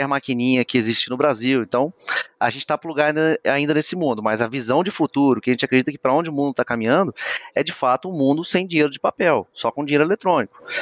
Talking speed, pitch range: 240 wpm, 130-165 Hz